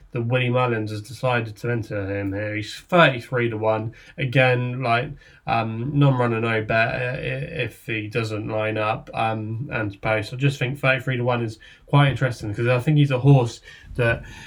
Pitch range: 115-135 Hz